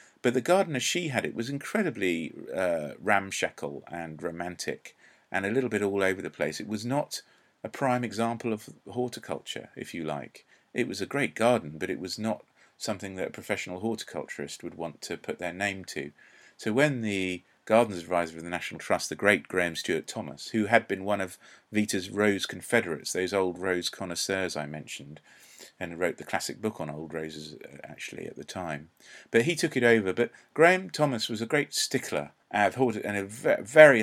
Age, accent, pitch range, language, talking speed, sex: 40-59, British, 90-125 Hz, English, 190 wpm, male